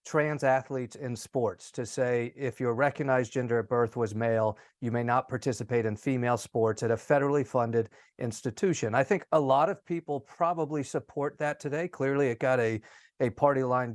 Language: English